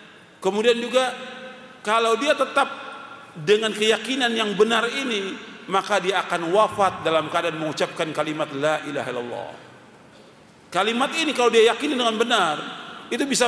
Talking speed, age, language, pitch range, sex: 135 wpm, 40-59, Indonesian, 185-255 Hz, male